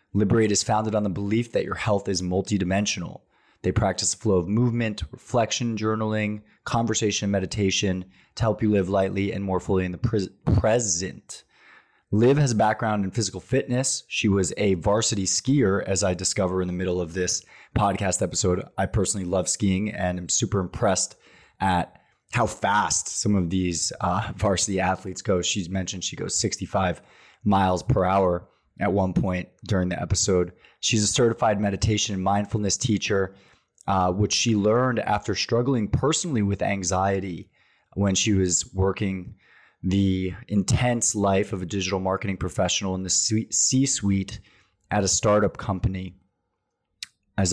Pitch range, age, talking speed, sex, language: 95-110 Hz, 20-39, 155 wpm, male, English